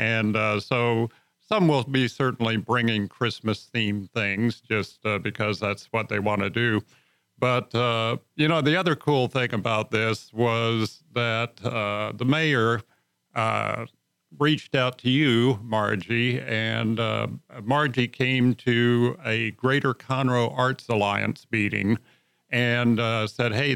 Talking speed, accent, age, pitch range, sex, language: 140 wpm, American, 50-69, 110-130 Hz, male, English